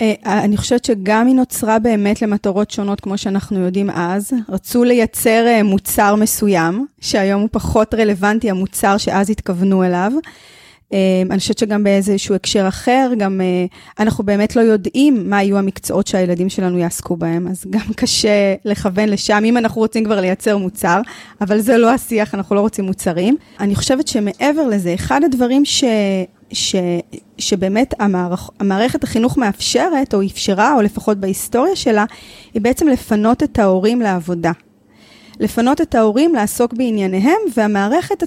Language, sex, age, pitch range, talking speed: Hebrew, female, 20-39, 200-245 Hz, 145 wpm